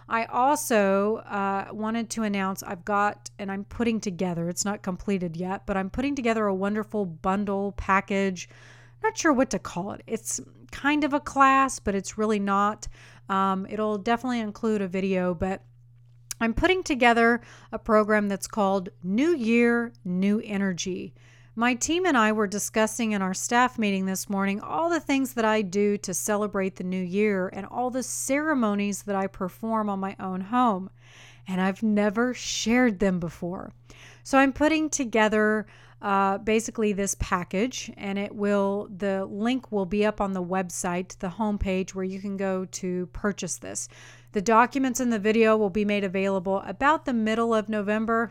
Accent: American